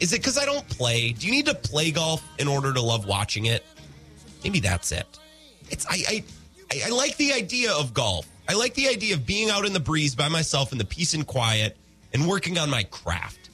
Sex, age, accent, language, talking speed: male, 30-49, American, English, 230 wpm